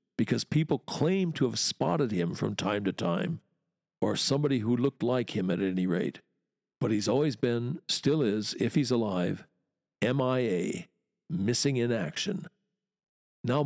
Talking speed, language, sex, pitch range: 150 wpm, English, male, 110-140 Hz